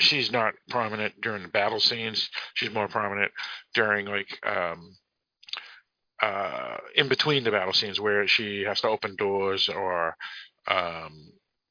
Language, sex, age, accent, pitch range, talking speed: English, male, 50-69, American, 110-135 Hz, 135 wpm